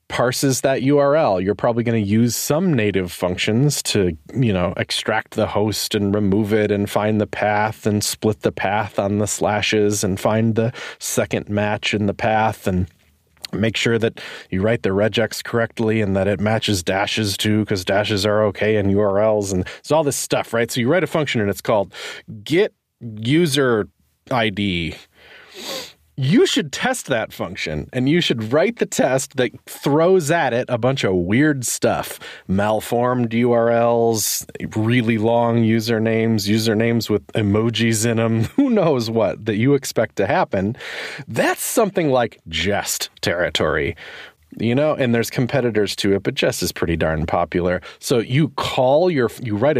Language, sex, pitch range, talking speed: English, male, 105-130 Hz, 165 wpm